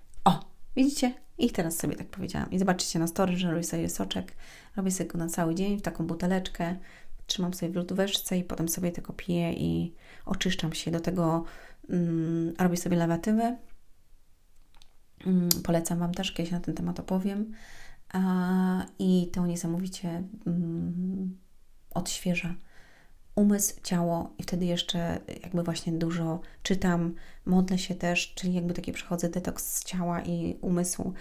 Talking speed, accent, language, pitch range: 150 wpm, native, Polish, 170-190 Hz